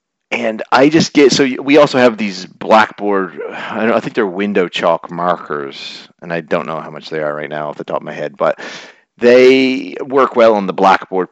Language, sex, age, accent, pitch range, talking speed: English, male, 40-59, American, 95-125 Hz, 210 wpm